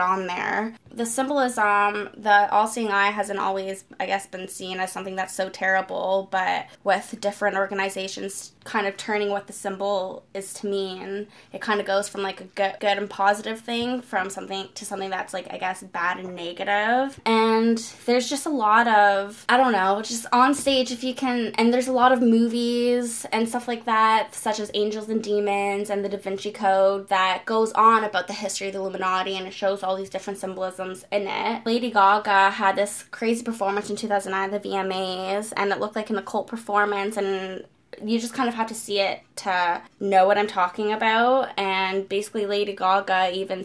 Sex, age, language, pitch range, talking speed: female, 10-29, English, 190-210 Hz, 200 wpm